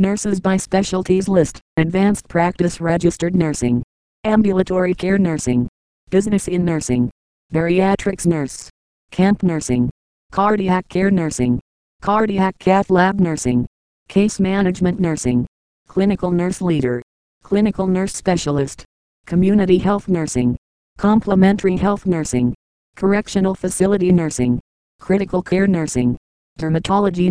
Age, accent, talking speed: 40-59, American, 105 wpm